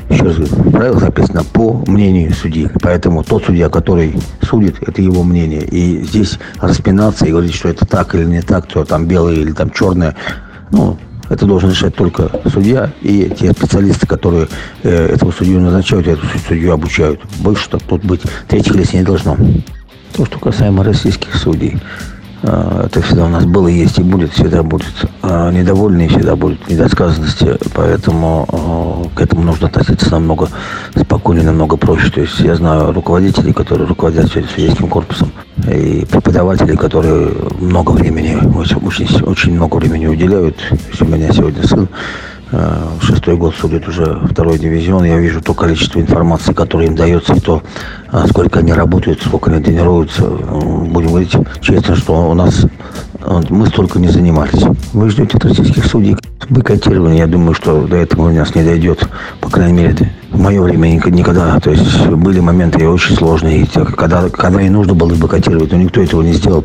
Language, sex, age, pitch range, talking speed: Russian, male, 50-69, 80-95 Hz, 165 wpm